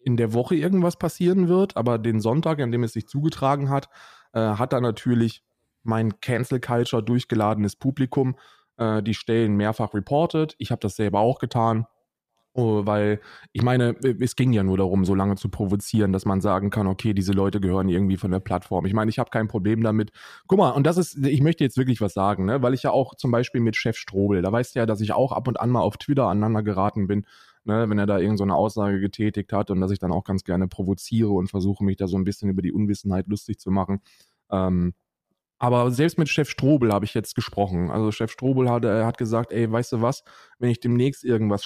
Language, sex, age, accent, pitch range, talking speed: German, male, 20-39, German, 100-130 Hz, 225 wpm